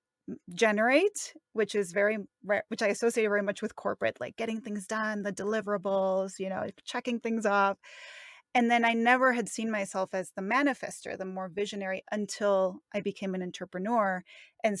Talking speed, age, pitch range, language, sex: 165 wpm, 30-49, 200-245 Hz, English, female